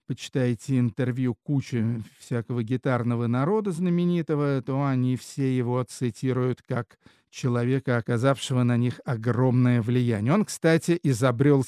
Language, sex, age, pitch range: Russian, male, 50-69, 125-160 Hz